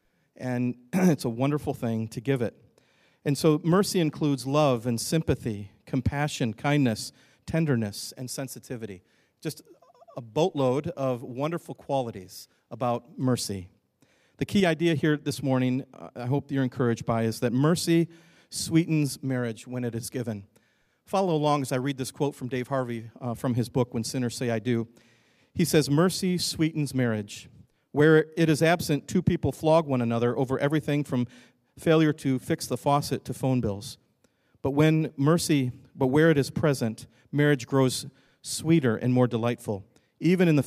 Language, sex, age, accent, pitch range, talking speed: English, male, 40-59, American, 125-150 Hz, 160 wpm